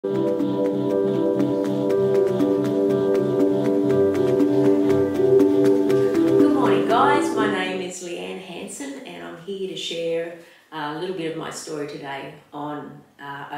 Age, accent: 30-49, Australian